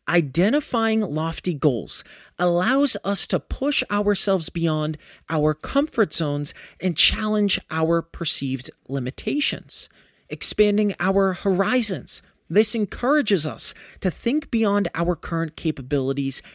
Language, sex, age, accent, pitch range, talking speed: English, male, 30-49, American, 155-210 Hz, 105 wpm